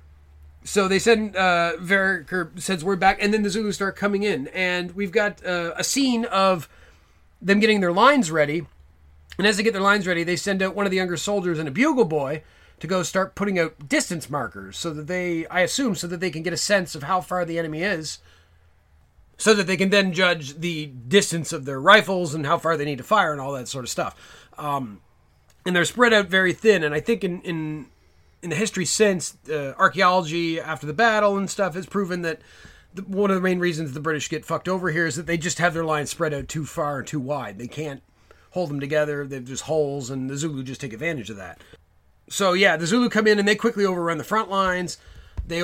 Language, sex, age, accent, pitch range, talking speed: English, male, 30-49, American, 140-190 Hz, 235 wpm